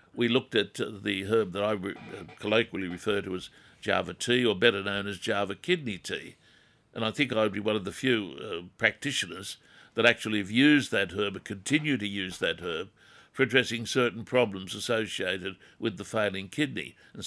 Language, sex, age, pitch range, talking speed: English, male, 60-79, 105-135 Hz, 185 wpm